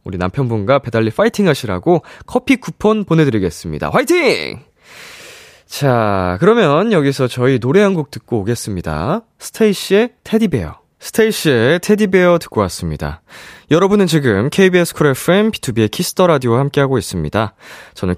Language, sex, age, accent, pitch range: Korean, male, 20-39, native, 95-155 Hz